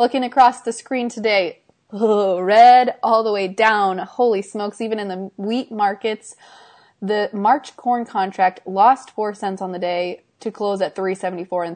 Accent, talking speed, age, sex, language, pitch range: American, 165 wpm, 20-39, female, English, 185-225 Hz